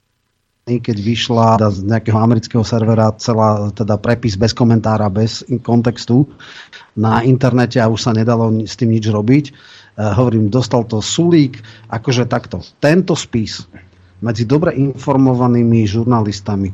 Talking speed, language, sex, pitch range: 135 wpm, Slovak, male, 115-135 Hz